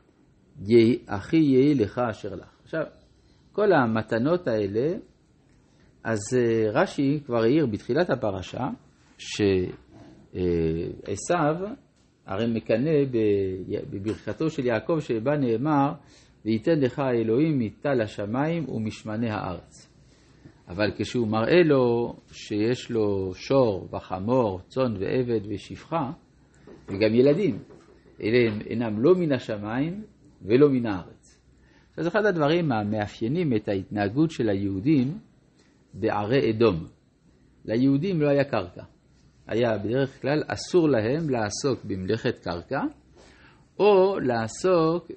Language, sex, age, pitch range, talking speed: Hebrew, male, 50-69, 105-145 Hz, 100 wpm